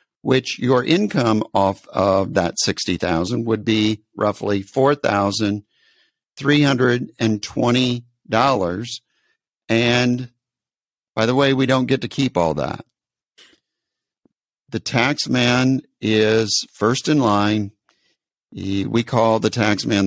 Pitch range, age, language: 100-125 Hz, 50-69, English